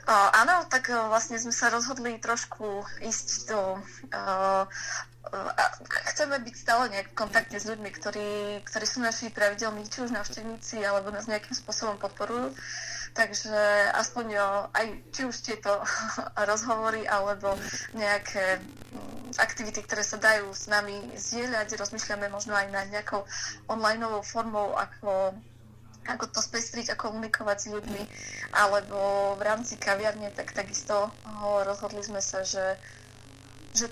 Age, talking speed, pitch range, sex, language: 20-39, 140 wpm, 200-225 Hz, female, Slovak